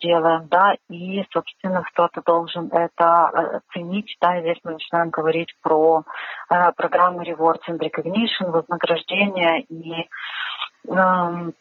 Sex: female